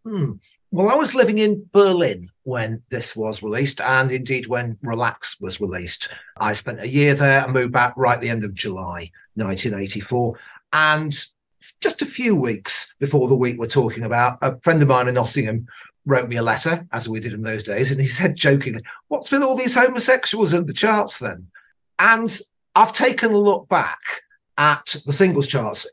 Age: 40-59